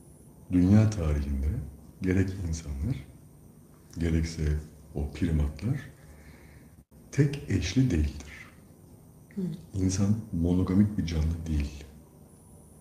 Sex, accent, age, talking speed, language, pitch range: male, native, 60-79, 70 wpm, Turkish, 80-100 Hz